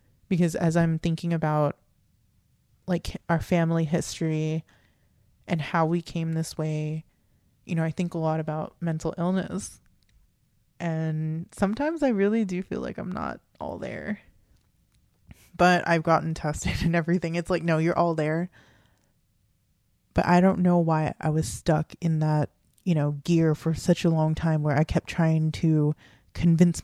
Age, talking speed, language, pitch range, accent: 20-39, 160 wpm, English, 155-175 Hz, American